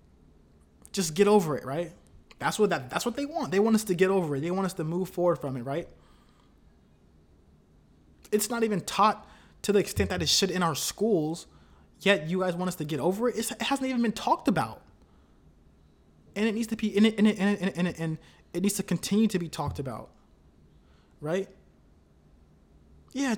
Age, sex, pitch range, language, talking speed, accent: 20-39, male, 140-195 Hz, English, 200 wpm, American